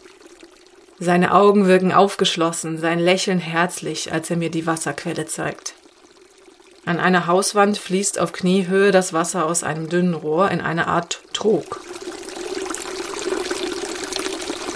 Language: German